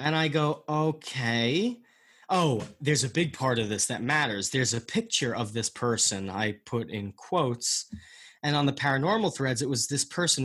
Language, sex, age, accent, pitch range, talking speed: English, male, 30-49, American, 120-175 Hz, 185 wpm